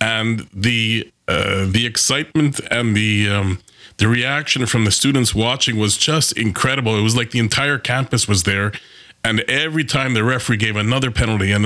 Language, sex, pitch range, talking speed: English, male, 110-130 Hz, 175 wpm